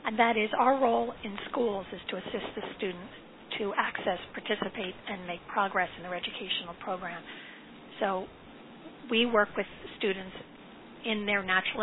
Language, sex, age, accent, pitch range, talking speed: English, female, 50-69, American, 195-235 Hz, 150 wpm